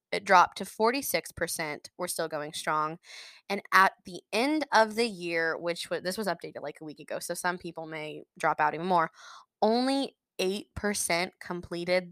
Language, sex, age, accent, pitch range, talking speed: English, female, 20-39, American, 170-230 Hz, 170 wpm